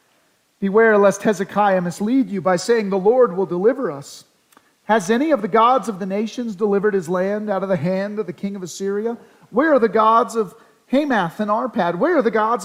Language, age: English, 40-59